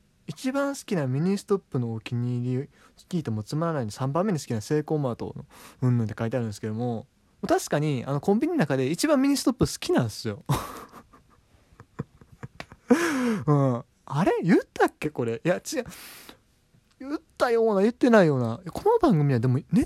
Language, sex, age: Japanese, male, 20-39